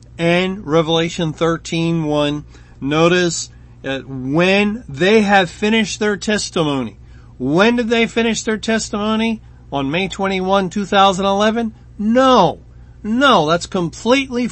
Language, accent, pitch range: English, American, 145-200 Hz